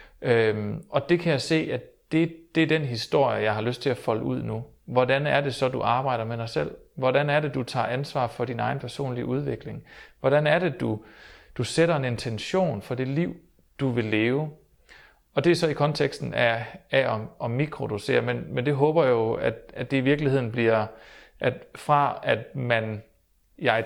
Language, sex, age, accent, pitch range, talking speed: Danish, male, 40-59, native, 110-140 Hz, 205 wpm